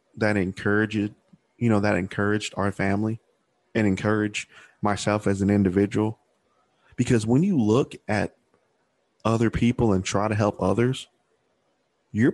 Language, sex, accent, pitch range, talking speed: English, male, American, 105-125 Hz, 130 wpm